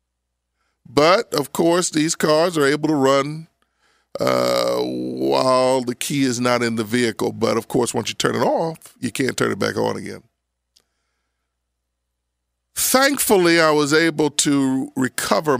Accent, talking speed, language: American, 150 wpm, English